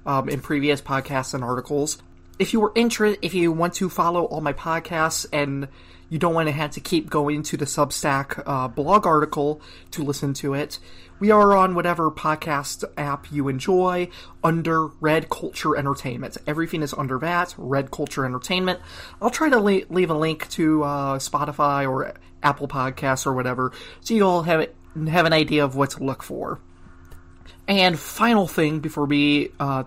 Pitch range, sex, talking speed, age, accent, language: 140-175 Hz, male, 180 wpm, 30-49, American, English